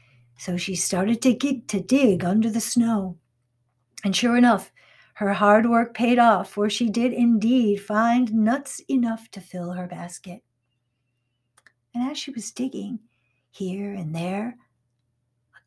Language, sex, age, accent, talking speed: English, female, 60-79, American, 145 wpm